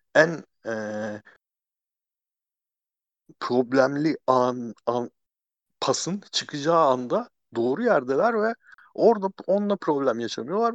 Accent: native